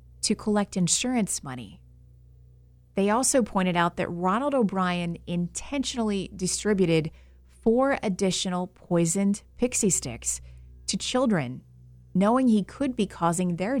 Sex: female